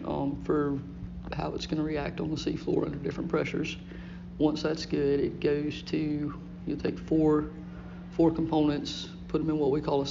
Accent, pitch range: American, 140-155 Hz